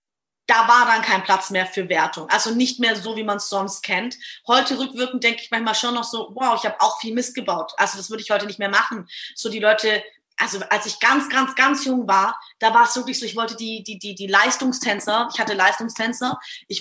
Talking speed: 240 wpm